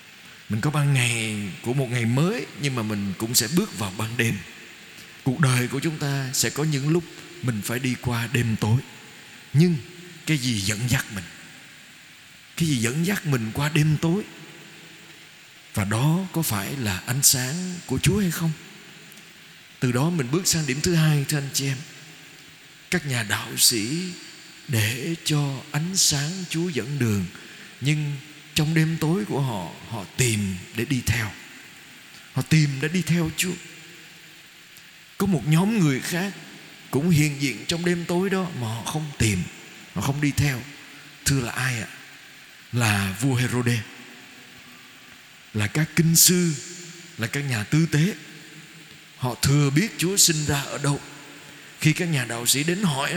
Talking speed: 170 wpm